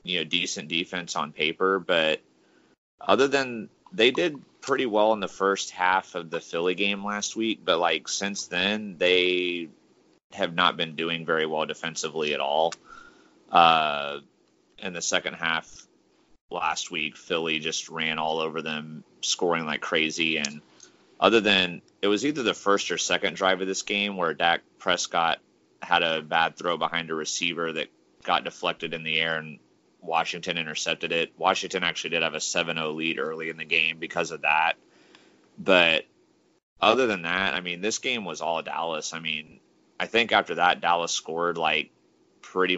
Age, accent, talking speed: 30-49, American, 175 wpm